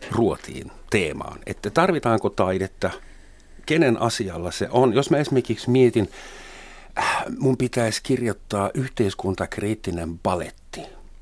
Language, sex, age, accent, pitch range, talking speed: Finnish, male, 50-69, native, 85-115 Hz, 95 wpm